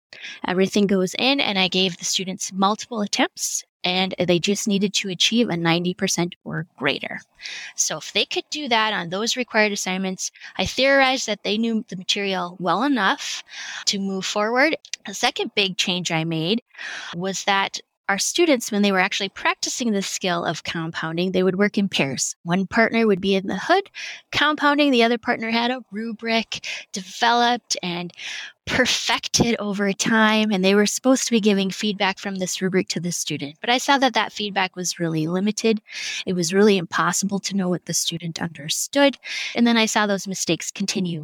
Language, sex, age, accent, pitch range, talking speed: English, female, 20-39, American, 185-230 Hz, 180 wpm